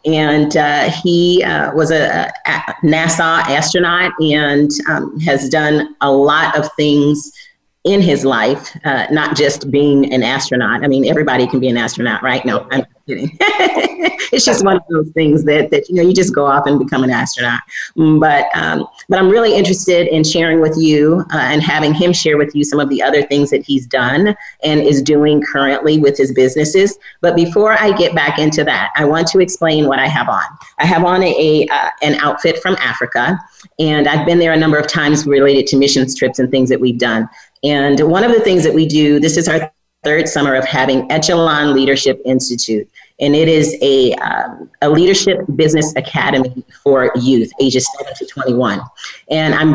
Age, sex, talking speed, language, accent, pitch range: 40-59, female, 195 wpm, English, American, 140-165 Hz